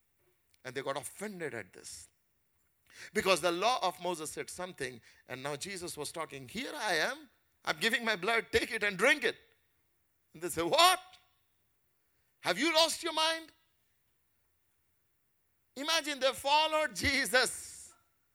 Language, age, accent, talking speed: English, 50-69, Indian, 140 wpm